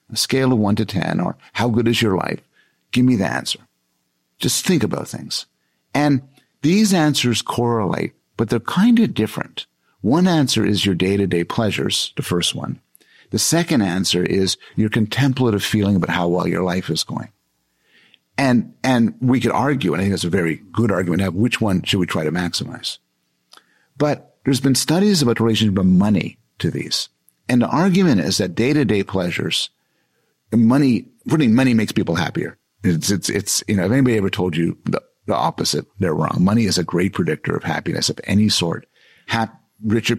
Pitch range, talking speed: 90-120 Hz, 190 wpm